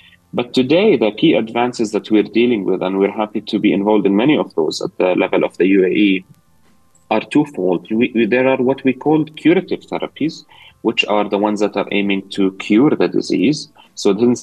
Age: 30-49